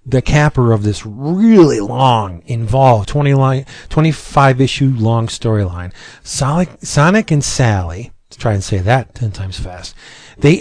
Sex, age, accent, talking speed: male, 40-59, American, 145 wpm